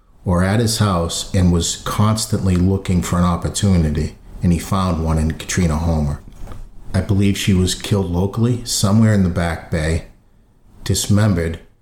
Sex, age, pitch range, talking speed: male, 50-69, 90-105 Hz, 150 wpm